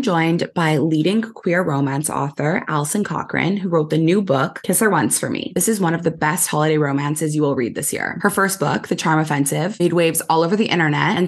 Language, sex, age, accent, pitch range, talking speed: English, female, 20-39, American, 155-195 Hz, 235 wpm